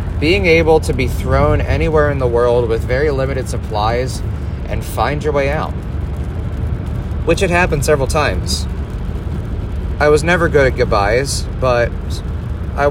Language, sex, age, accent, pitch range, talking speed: English, male, 30-49, American, 90-125 Hz, 145 wpm